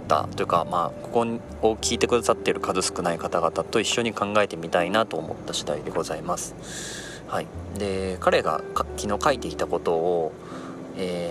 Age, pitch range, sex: 30-49, 85-115 Hz, male